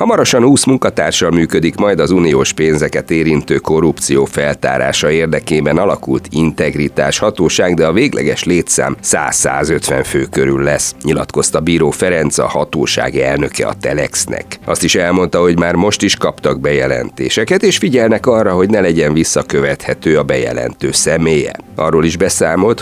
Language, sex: Hungarian, male